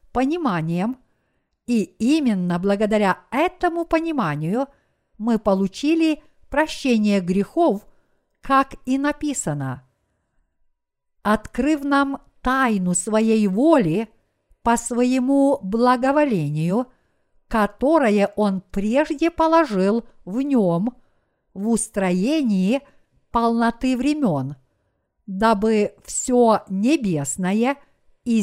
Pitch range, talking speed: 190-270 Hz, 75 wpm